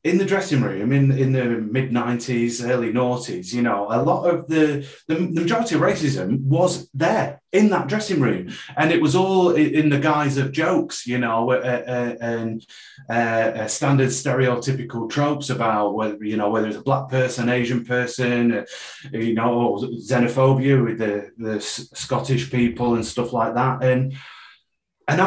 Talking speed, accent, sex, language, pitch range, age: 175 wpm, British, male, English, 120-155 Hz, 30-49